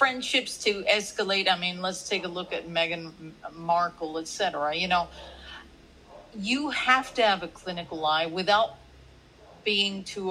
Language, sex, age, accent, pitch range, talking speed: English, female, 50-69, American, 180-235 Hz, 150 wpm